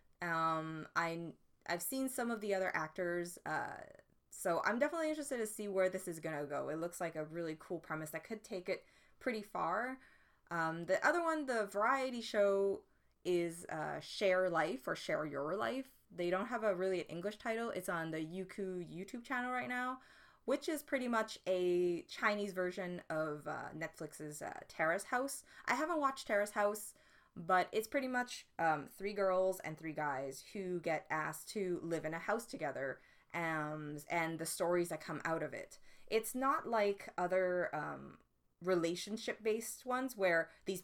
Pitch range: 160-215 Hz